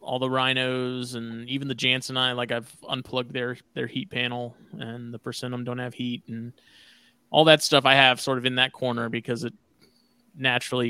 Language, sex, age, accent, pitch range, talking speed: English, male, 20-39, American, 125-145 Hz, 205 wpm